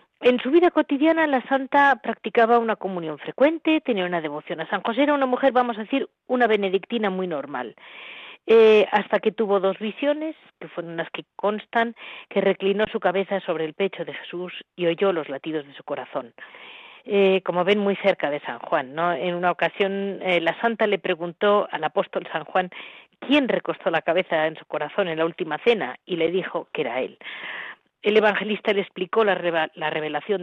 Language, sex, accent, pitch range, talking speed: Spanish, female, Spanish, 175-240 Hz, 190 wpm